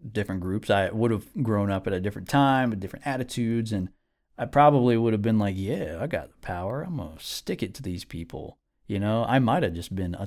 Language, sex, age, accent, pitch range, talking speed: English, male, 20-39, American, 95-115 Hz, 245 wpm